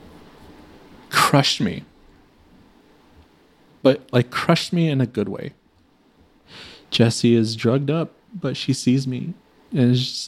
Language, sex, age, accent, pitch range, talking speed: English, male, 30-49, American, 105-145 Hz, 125 wpm